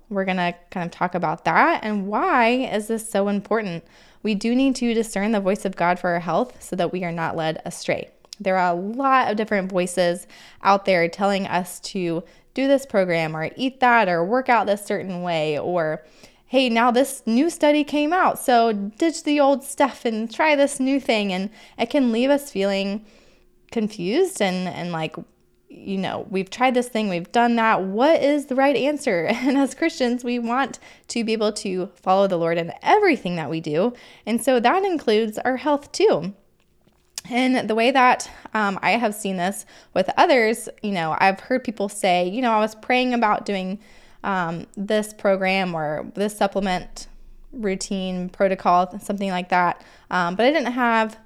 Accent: American